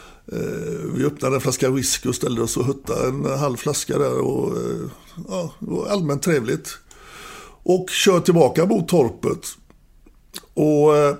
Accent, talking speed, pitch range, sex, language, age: native, 140 wpm, 130-170 Hz, male, Swedish, 60-79